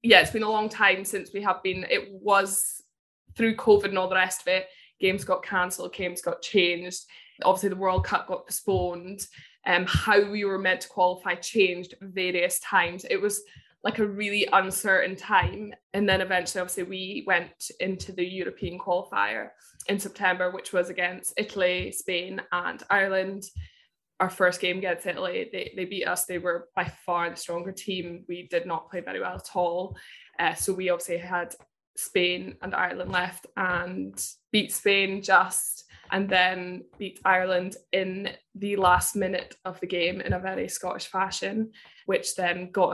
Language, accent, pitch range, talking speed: English, British, 180-200 Hz, 170 wpm